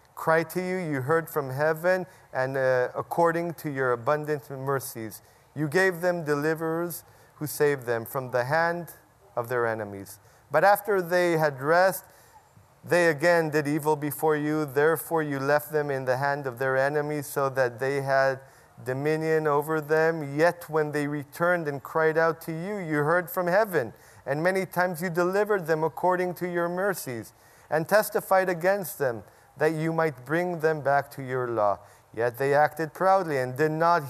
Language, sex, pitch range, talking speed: English, male, 135-170 Hz, 170 wpm